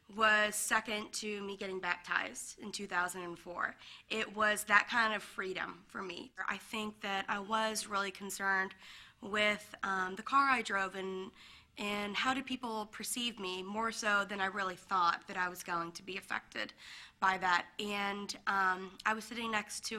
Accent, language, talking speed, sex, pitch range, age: American, English, 175 wpm, female, 195-255 Hz, 20-39